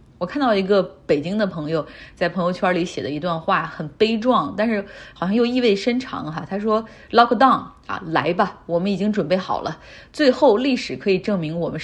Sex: female